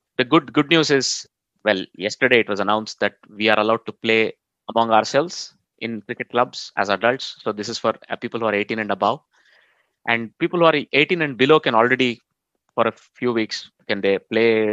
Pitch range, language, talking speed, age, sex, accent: 110-135 Hz, English, 200 wpm, 20-39, male, Indian